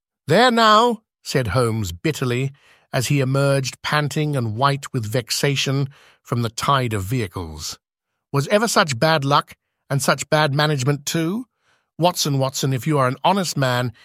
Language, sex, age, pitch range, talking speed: English, male, 50-69, 120-150 Hz, 155 wpm